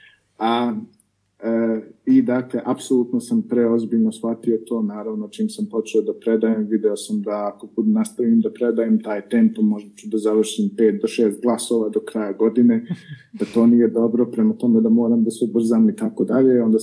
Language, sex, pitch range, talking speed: Croatian, male, 100-150 Hz, 180 wpm